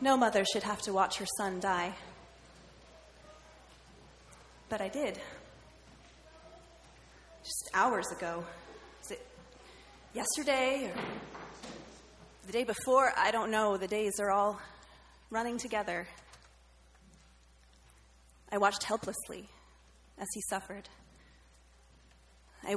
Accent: American